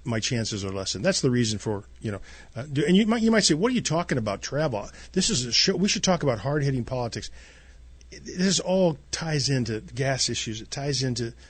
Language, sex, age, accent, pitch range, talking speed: English, male, 40-59, American, 105-140 Hz, 235 wpm